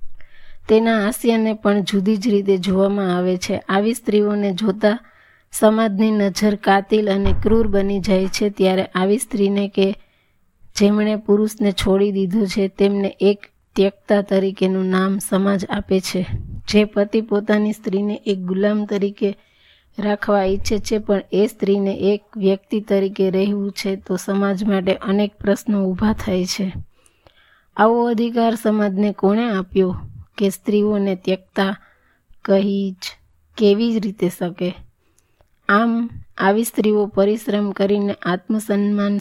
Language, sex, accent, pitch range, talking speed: Gujarati, female, native, 190-210 Hz, 105 wpm